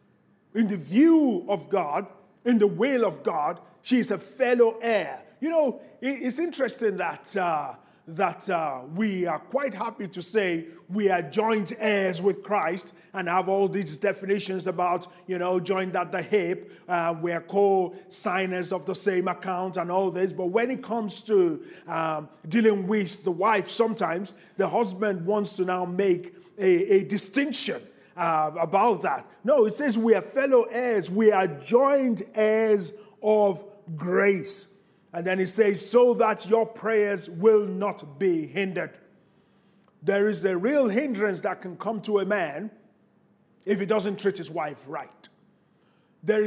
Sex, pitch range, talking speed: male, 185-220 Hz, 160 wpm